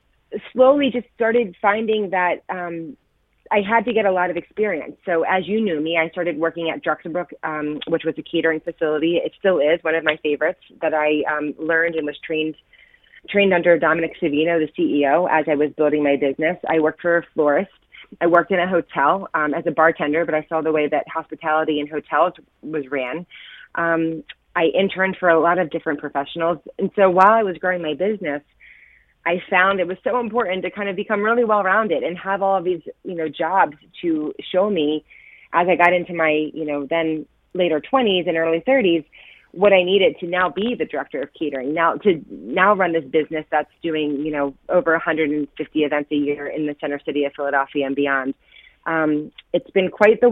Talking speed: 205 wpm